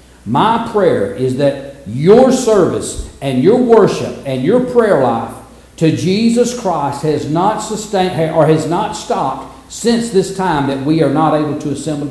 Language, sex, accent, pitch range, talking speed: English, male, American, 150-205 Hz, 165 wpm